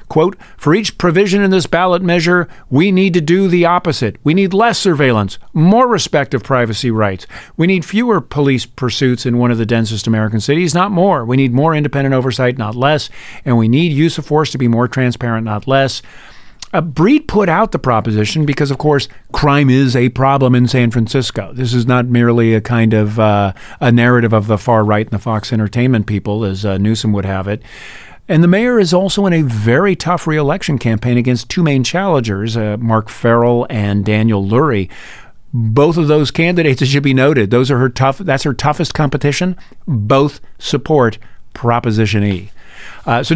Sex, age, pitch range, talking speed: male, 50-69, 110-150 Hz, 190 wpm